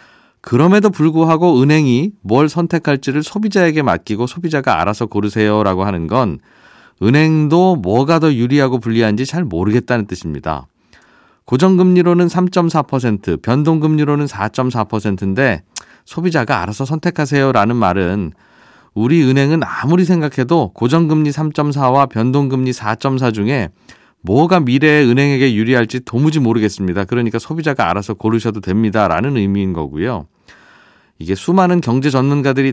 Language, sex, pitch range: Korean, male, 105-150 Hz